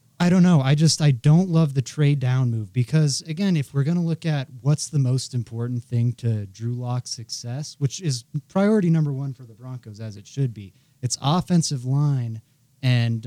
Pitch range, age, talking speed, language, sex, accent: 120-145 Hz, 30-49, 205 wpm, English, male, American